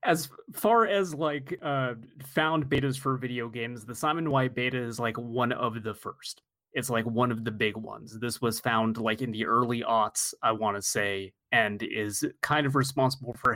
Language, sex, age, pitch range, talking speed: English, male, 30-49, 105-135 Hz, 200 wpm